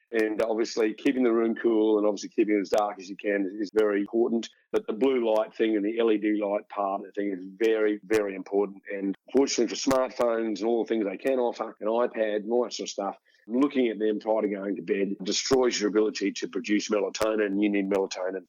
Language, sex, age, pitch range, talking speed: English, male, 40-59, 105-140 Hz, 225 wpm